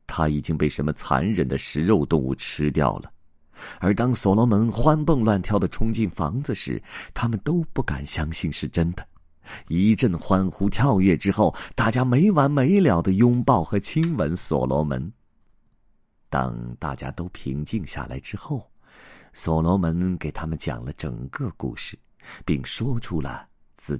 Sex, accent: male, native